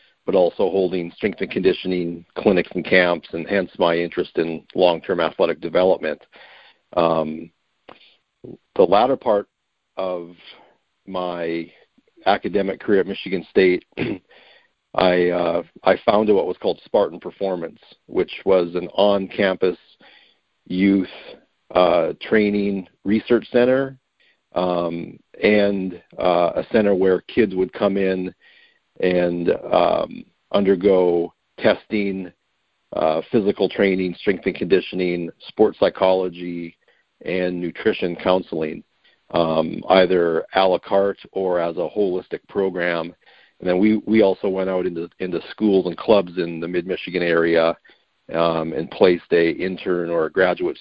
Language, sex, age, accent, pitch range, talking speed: English, male, 50-69, American, 85-100 Hz, 125 wpm